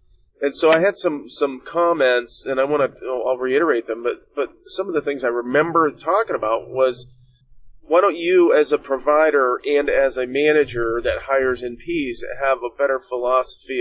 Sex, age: male, 40-59